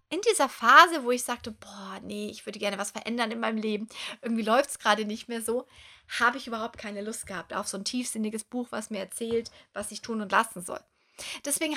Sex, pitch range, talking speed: female, 210-280 Hz, 225 wpm